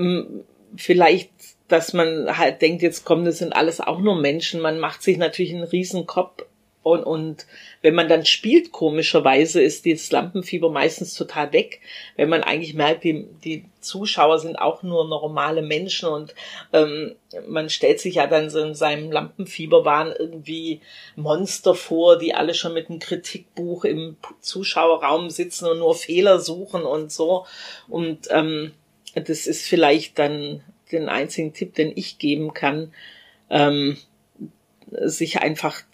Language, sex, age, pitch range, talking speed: German, female, 40-59, 155-180 Hz, 150 wpm